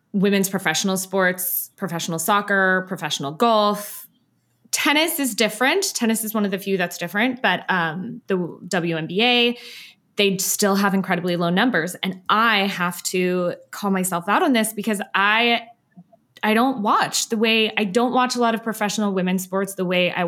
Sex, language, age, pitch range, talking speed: female, English, 20-39, 185-240 Hz, 165 wpm